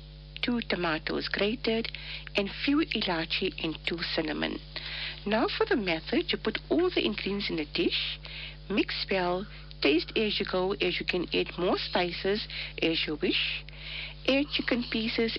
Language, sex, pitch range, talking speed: English, female, 160-215 Hz, 150 wpm